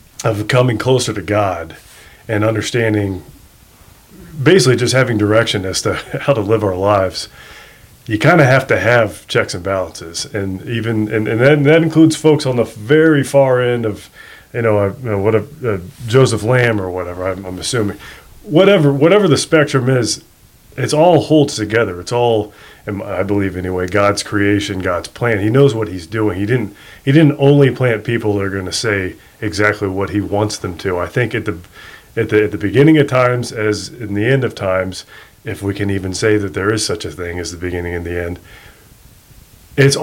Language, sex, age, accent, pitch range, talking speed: English, male, 30-49, American, 100-125 Hz, 200 wpm